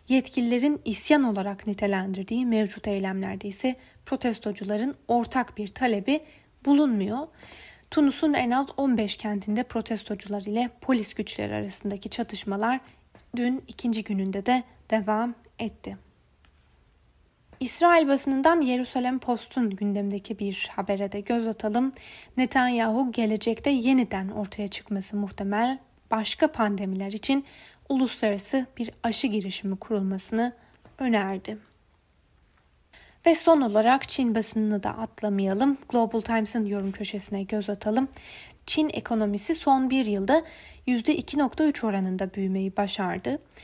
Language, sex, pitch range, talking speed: Turkish, female, 205-255 Hz, 105 wpm